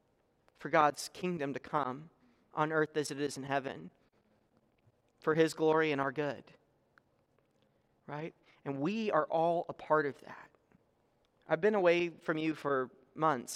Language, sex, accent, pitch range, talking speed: English, male, American, 155-195 Hz, 150 wpm